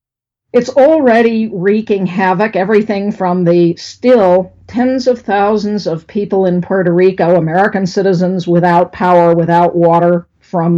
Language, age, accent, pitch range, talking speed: English, 50-69, American, 180-215 Hz, 130 wpm